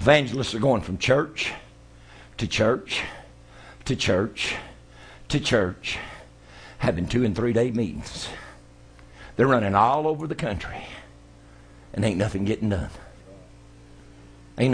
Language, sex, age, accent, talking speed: English, male, 60-79, American, 115 wpm